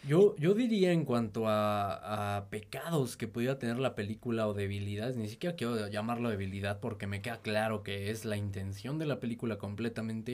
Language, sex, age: Spanish, male, 20-39